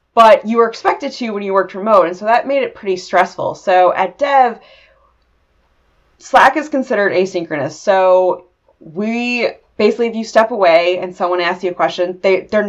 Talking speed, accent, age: 175 wpm, American, 20-39